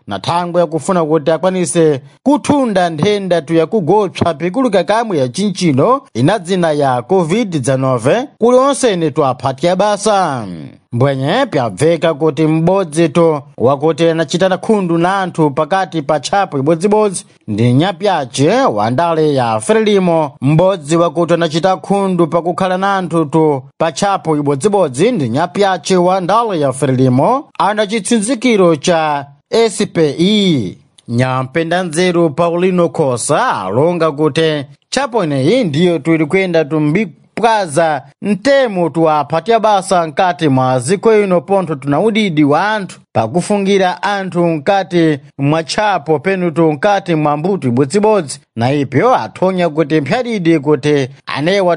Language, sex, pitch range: Portuguese, male, 150-195 Hz